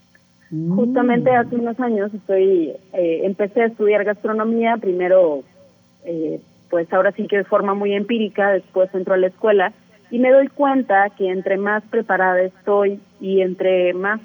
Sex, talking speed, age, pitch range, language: female, 155 wpm, 30-49, 180-220 Hz, Spanish